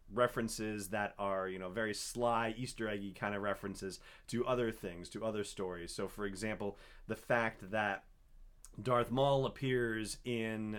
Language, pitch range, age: English, 100-120 Hz, 30-49